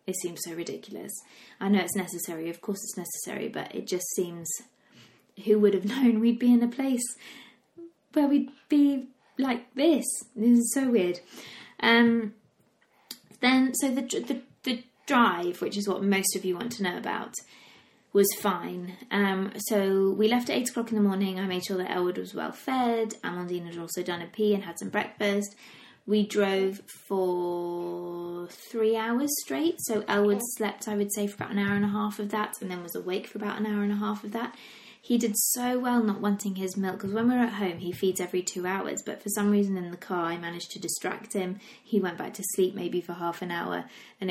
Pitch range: 185-235 Hz